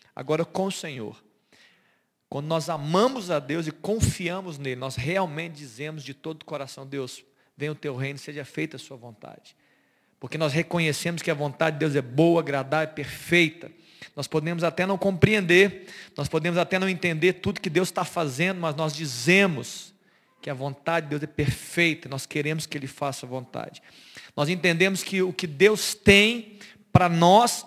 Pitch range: 150-200 Hz